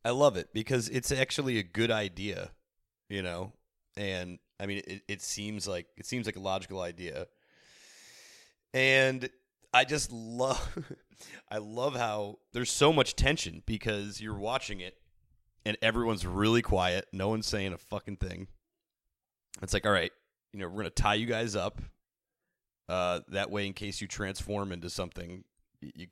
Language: English